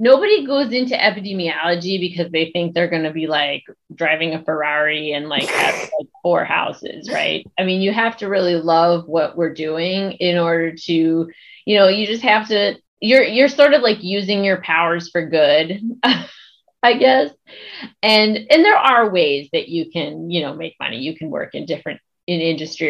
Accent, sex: American, female